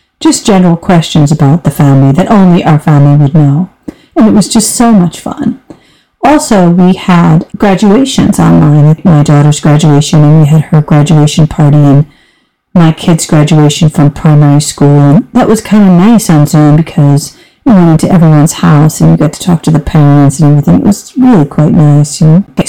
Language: English